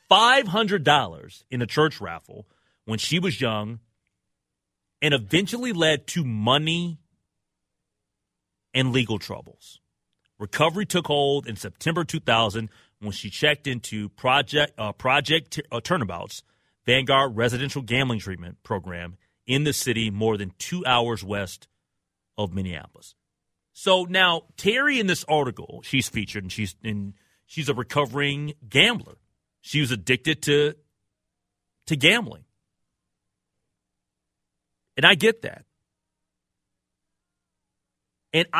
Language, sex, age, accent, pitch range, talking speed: English, male, 30-49, American, 105-160 Hz, 110 wpm